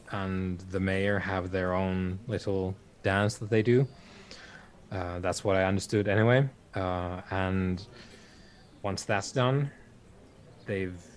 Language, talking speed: English, 125 wpm